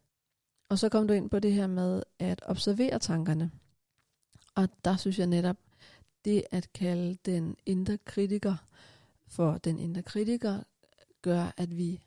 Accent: native